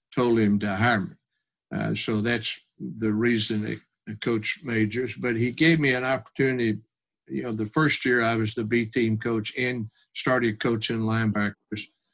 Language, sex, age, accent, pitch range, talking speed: English, male, 50-69, American, 105-120 Hz, 170 wpm